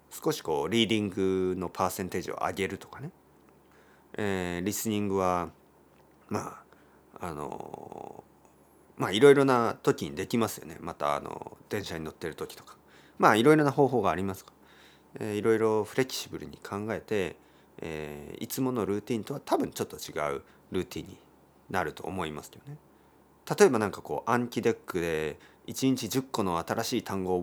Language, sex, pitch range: Japanese, male, 95-130 Hz